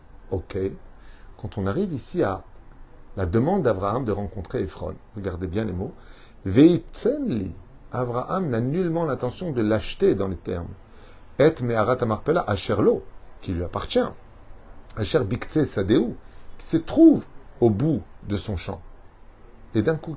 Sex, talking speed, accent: male, 140 wpm, French